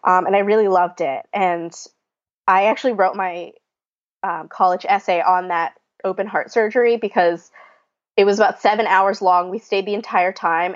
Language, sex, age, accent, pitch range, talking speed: English, female, 20-39, American, 180-210 Hz, 175 wpm